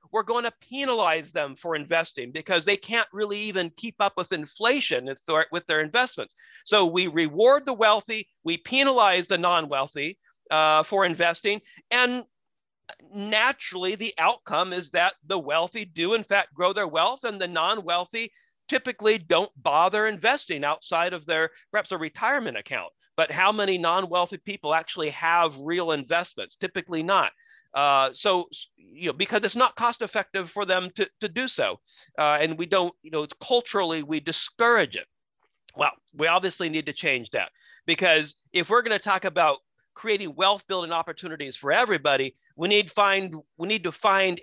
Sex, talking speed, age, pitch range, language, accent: male, 165 wpm, 40-59, 160-210 Hz, English, American